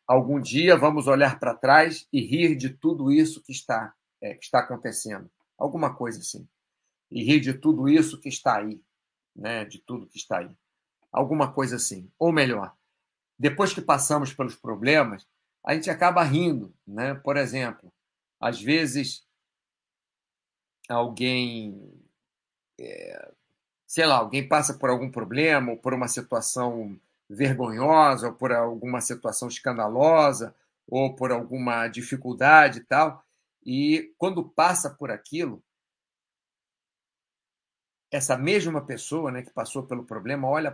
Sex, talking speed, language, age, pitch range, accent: male, 135 wpm, Portuguese, 50-69, 120-155 Hz, Brazilian